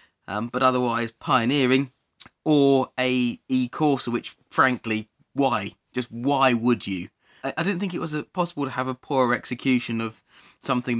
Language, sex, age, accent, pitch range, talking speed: English, male, 20-39, British, 110-150 Hz, 160 wpm